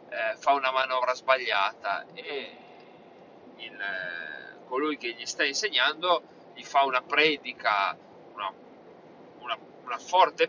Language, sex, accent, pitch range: Italian, male, native, 140-220 Hz